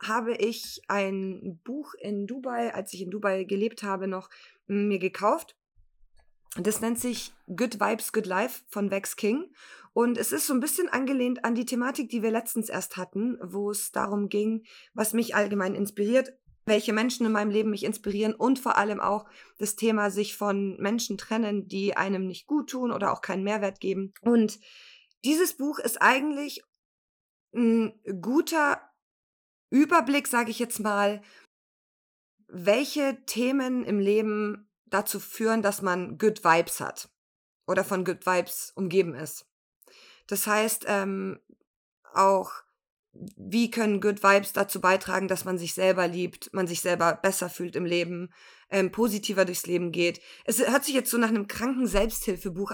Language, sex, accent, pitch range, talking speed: German, female, German, 195-235 Hz, 160 wpm